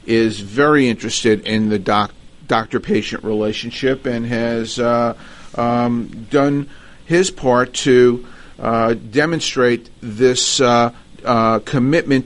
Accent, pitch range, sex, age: American, 115-135 Hz, male, 50-69